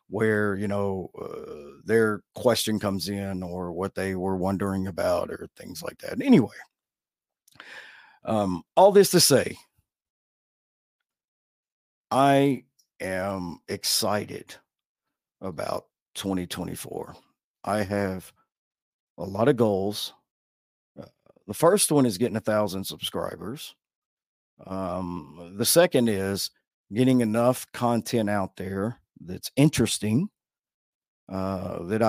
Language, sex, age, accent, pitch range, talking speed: English, male, 50-69, American, 95-120 Hz, 105 wpm